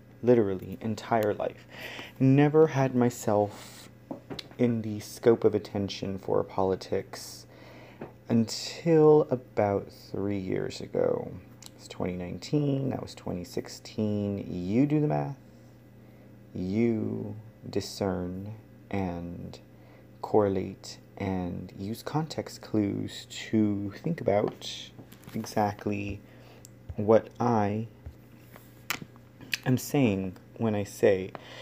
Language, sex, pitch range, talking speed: English, male, 100-125 Hz, 85 wpm